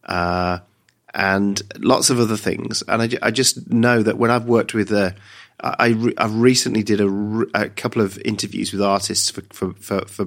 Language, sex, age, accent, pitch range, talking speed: English, male, 40-59, British, 100-120 Hz, 210 wpm